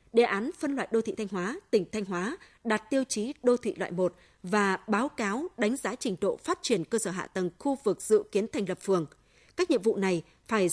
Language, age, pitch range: Vietnamese, 20-39, 190-250 Hz